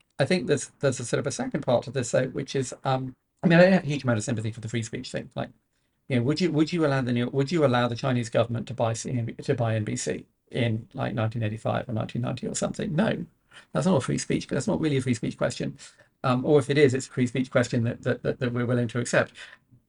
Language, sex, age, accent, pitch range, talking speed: English, male, 50-69, British, 120-150 Hz, 275 wpm